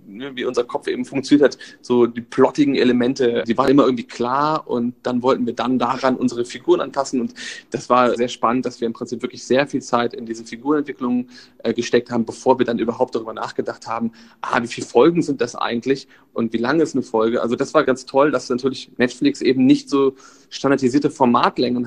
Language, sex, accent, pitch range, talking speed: German, male, German, 115-135 Hz, 210 wpm